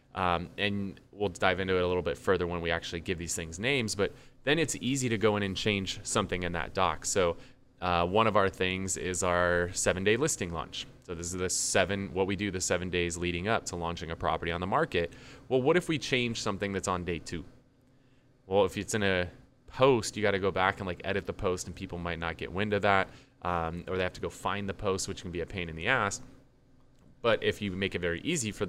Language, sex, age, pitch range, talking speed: English, male, 20-39, 90-110 Hz, 250 wpm